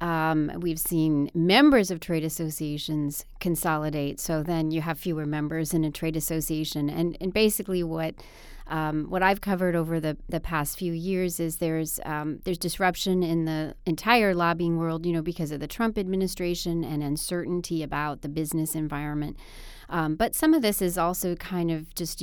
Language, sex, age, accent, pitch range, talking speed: English, female, 30-49, American, 160-185 Hz, 175 wpm